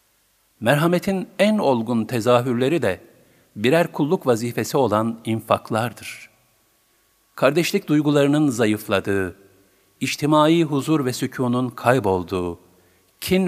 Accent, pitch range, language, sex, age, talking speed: native, 110-150 Hz, Turkish, male, 50-69, 85 wpm